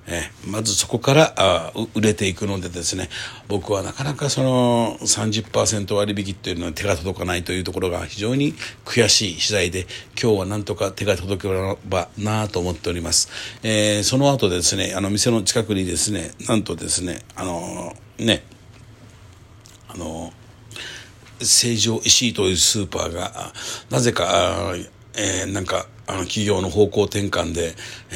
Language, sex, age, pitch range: Japanese, male, 60-79, 95-115 Hz